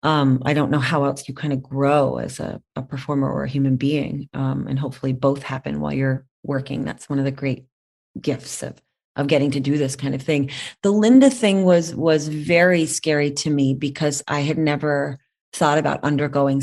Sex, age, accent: female, 30-49, American